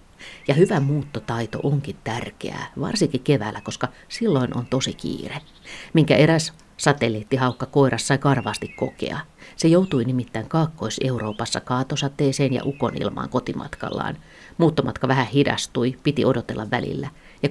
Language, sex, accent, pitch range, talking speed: Finnish, female, native, 120-145 Hz, 115 wpm